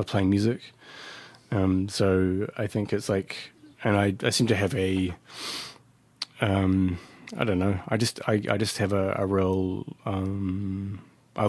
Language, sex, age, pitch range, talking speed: English, male, 20-39, 95-110 Hz, 150 wpm